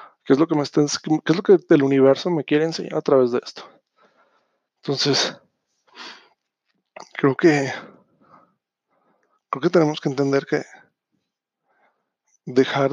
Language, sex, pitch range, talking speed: Spanish, male, 140-165 Hz, 130 wpm